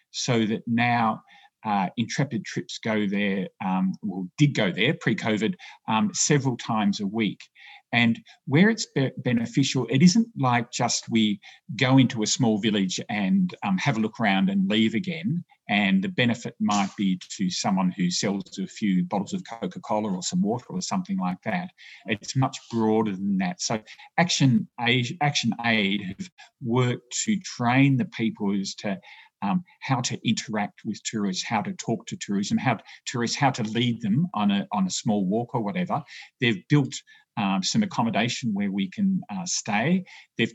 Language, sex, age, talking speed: English, male, 50-69, 175 wpm